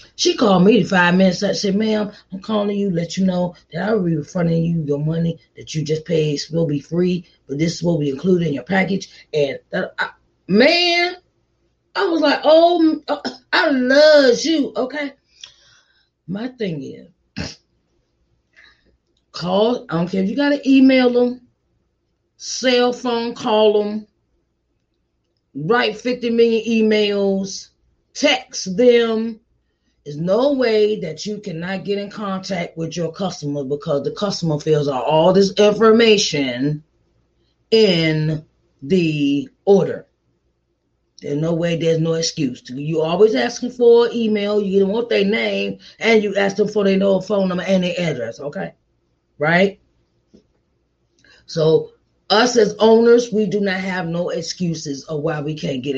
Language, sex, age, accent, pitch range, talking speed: English, female, 30-49, American, 165-230 Hz, 150 wpm